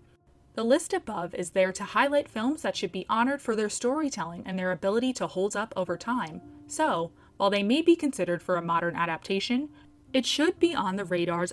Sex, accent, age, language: female, American, 20-39, English